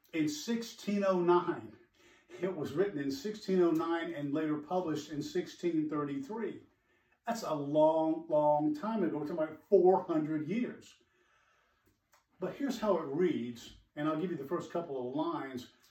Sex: male